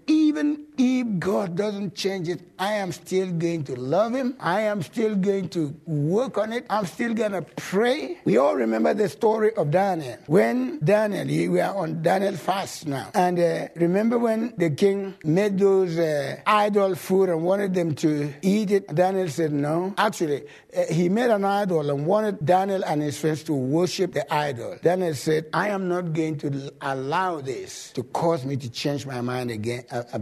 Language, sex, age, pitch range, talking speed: English, male, 60-79, 155-210 Hz, 190 wpm